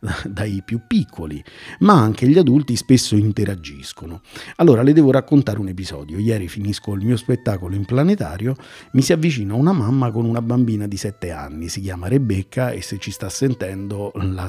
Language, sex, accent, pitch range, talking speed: Italian, male, native, 100-140 Hz, 175 wpm